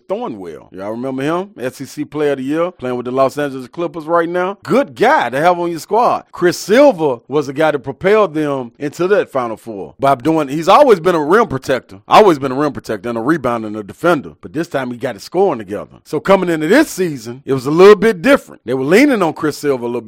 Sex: male